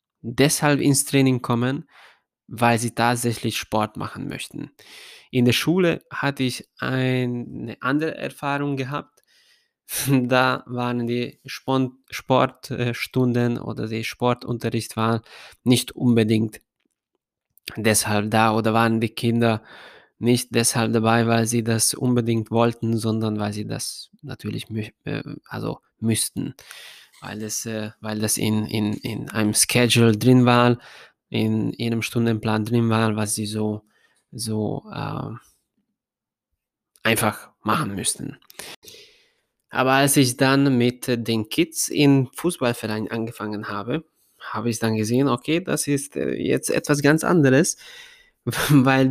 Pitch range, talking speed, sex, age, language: 115-135 Hz, 120 wpm, male, 20-39, German